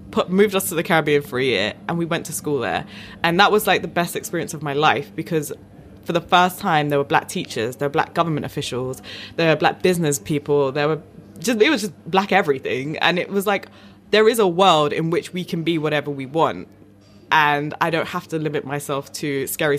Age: 20-39